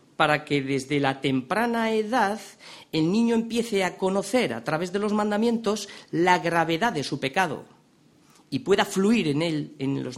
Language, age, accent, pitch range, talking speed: Spanish, 40-59, Spanish, 140-210 Hz, 165 wpm